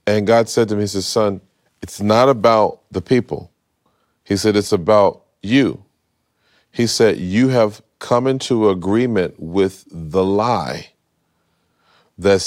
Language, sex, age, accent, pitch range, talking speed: English, male, 40-59, American, 95-110 Hz, 140 wpm